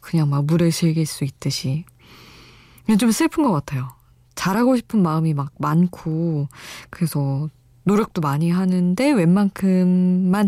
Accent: native